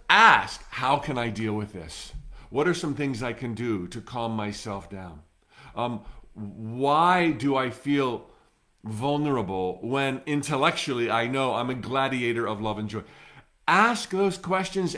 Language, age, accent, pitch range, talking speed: English, 50-69, American, 110-160 Hz, 150 wpm